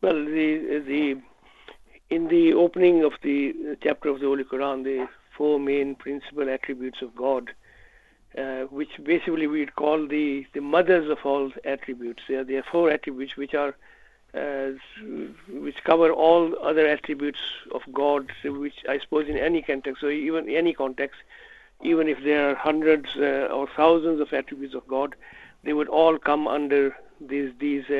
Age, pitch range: 60-79, 140-155 Hz